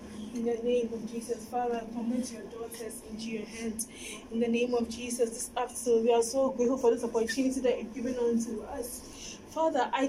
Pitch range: 230-280 Hz